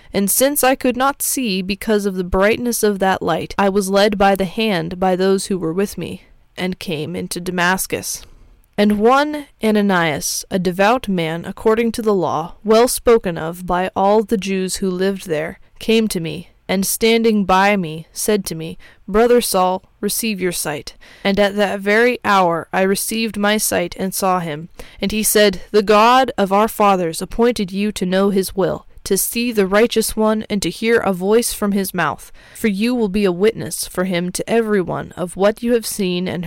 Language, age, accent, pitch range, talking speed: English, 20-39, American, 185-225 Hz, 195 wpm